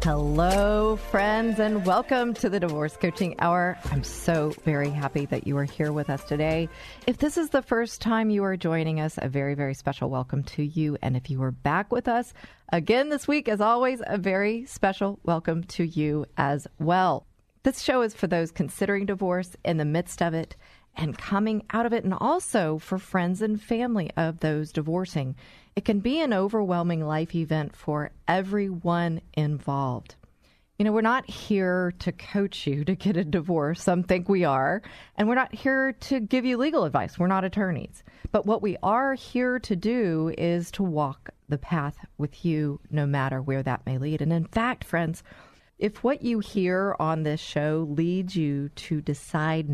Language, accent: English, American